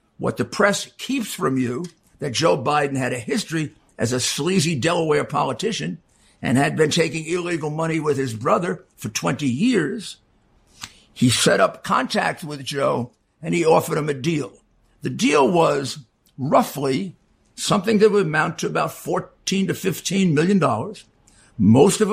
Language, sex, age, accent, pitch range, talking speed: English, male, 60-79, American, 125-185 Hz, 155 wpm